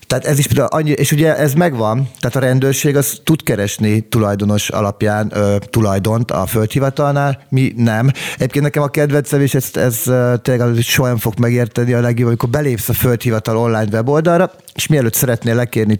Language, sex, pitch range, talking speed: Hungarian, male, 110-140 Hz, 175 wpm